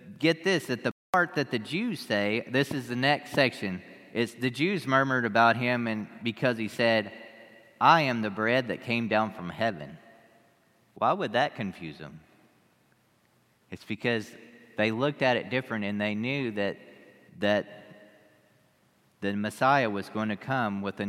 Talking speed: 165 wpm